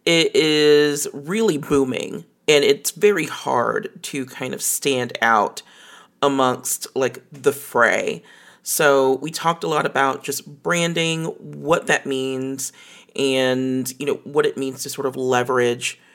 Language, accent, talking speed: English, American, 140 wpm